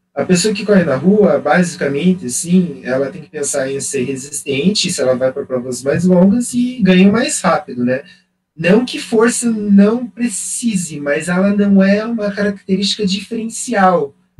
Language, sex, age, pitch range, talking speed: Portuguese, male, 20-39, 135-200 Hz, 165 wpm